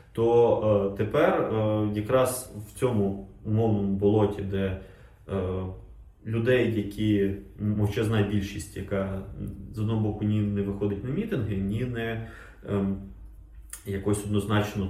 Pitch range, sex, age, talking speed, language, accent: 95-110 Hz, male, 20-39, 115 wpm, Ukrainian, native